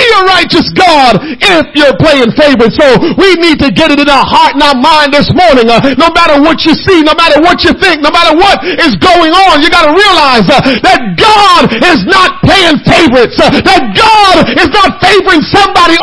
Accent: American